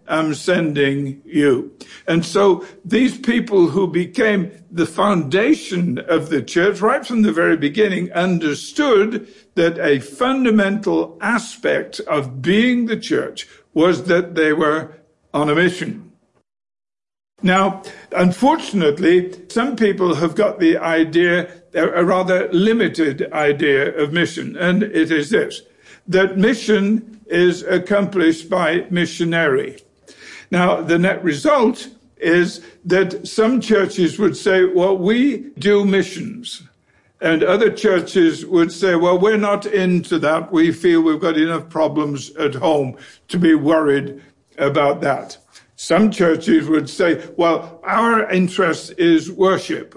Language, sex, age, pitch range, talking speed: English, male, 60-79, 165-210 Hz, 125 wpm